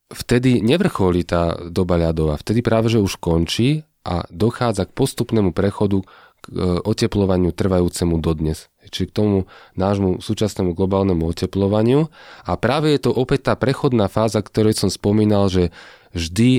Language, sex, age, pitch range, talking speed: Slovak, male, 30-49, 95-115 Hz, 140 wpm